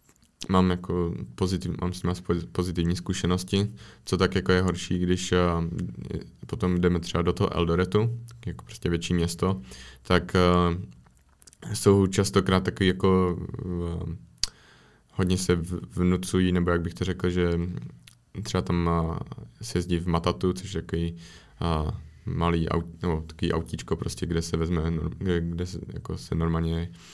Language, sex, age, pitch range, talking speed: Czech, male, 20-39, 85-90 Hz, 130 wpm